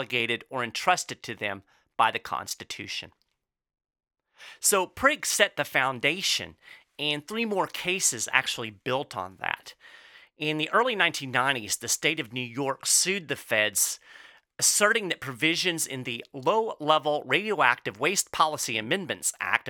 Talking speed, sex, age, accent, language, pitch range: 140 wpm, male, 40-59, American, English, 120-170 Hz